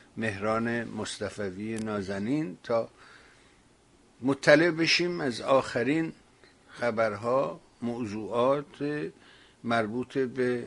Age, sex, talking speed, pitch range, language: 60-79, male, 65 wpm, 115-140 Hz, Persian